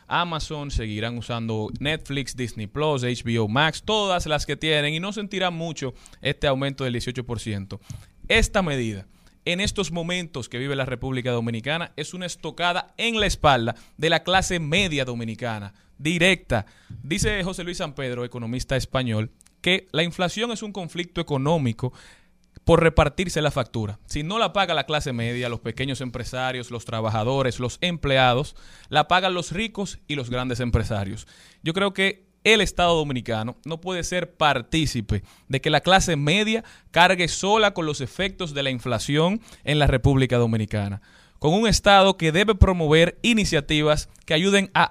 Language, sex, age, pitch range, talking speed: Spanish, male, 30-49, 125-180 Hz, 160 wpm